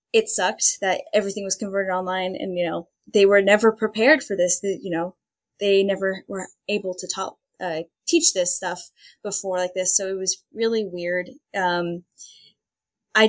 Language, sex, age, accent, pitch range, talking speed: English, female, 10-29, American, 185-225 Hz, 175 wpm